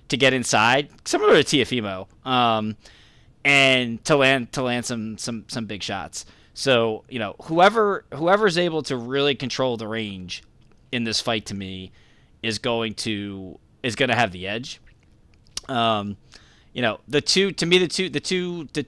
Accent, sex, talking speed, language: American, male, 175 wpm, English